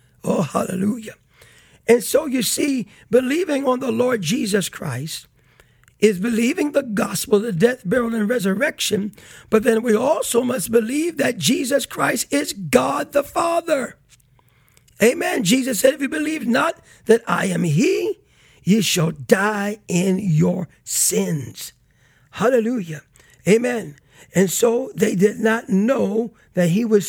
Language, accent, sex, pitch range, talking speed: English, American, male, 175-245 Hz, 135 wpm